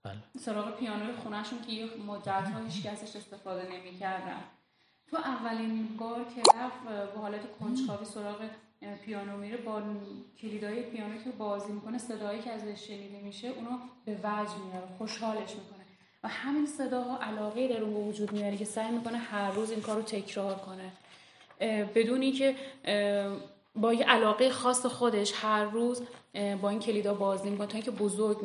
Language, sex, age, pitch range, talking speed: Persian, female, 10-29, 205-230 Hz, 155 wpm